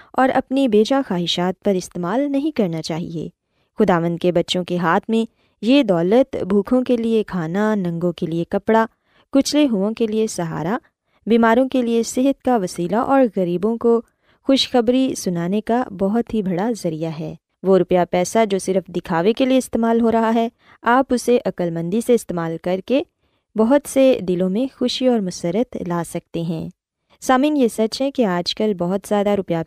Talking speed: 175 wpm